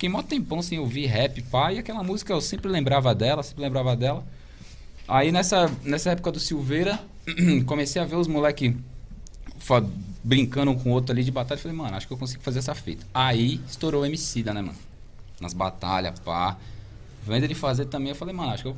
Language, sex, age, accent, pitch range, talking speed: Portuguese, male, 20-39, Brazilian, 90-135 Hz, 215 wpm